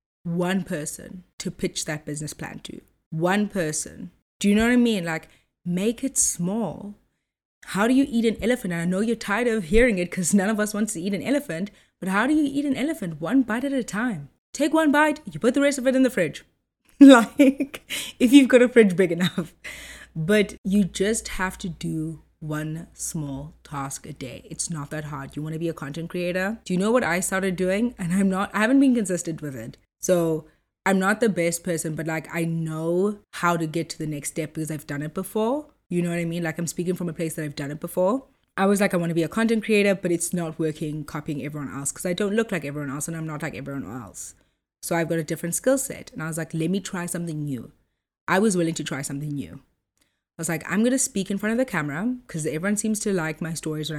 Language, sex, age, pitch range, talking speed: English, female, 20-39, 160-215 Hz, 250 wpm